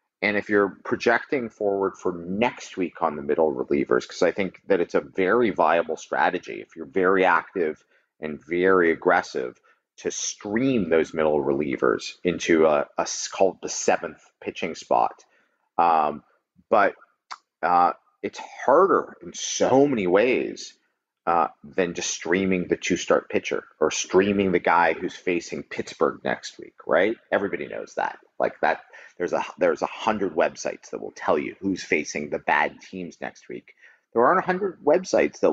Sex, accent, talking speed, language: male, American, 160 wpm, English